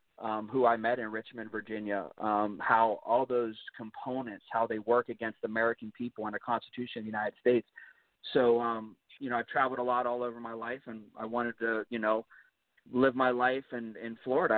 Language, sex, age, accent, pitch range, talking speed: English, male, 30-49, American, 110-120 Hz, 200 wpm